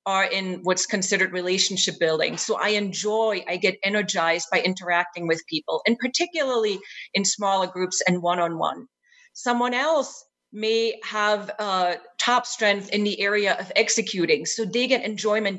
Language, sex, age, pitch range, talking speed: English, female, 40-59, 180-230 Hz, 150 wpm